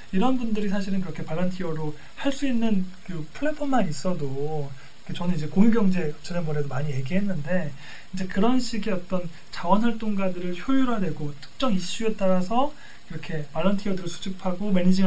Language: Korean